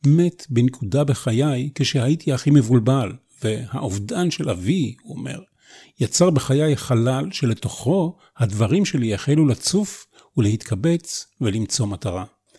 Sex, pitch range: male, 120-155 Hz